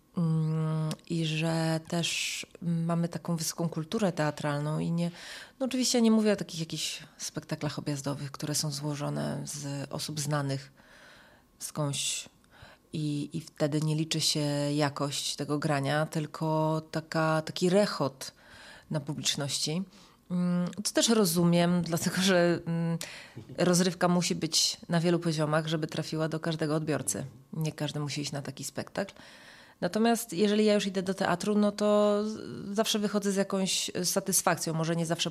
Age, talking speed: 30-49, 145 wpm